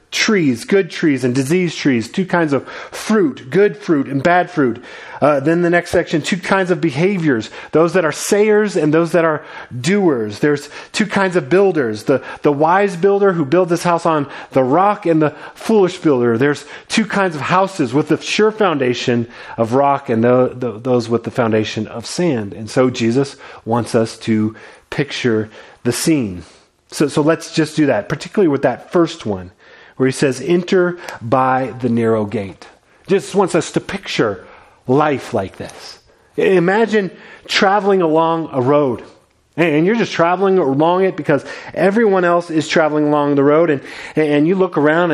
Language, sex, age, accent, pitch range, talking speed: English, male, 30-49, American, 140-190 Hz, 175 wpm